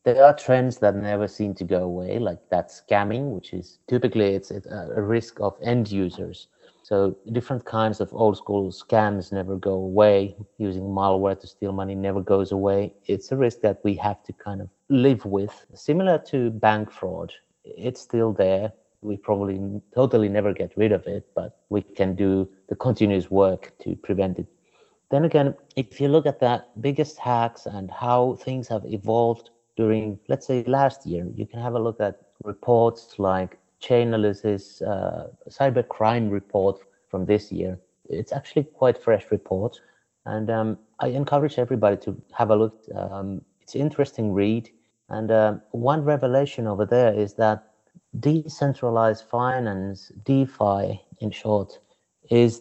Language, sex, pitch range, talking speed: English, male, 100-120 Hz, 160 wpm